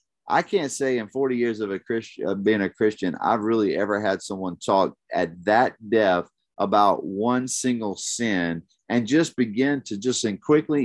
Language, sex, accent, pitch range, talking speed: English, male, American, 110-140 Hz, 185 wpm